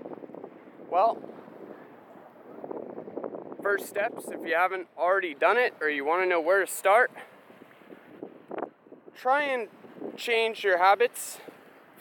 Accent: American